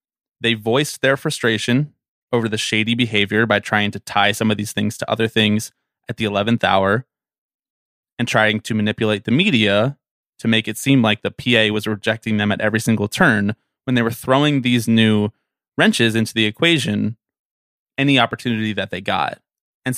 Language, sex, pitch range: English, male, 105-130 Hz